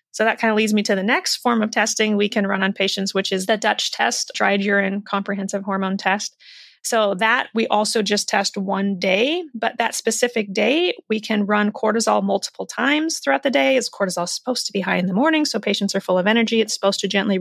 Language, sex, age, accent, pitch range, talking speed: English, female, 30-49, American, 195-240 Hz, 235 wpm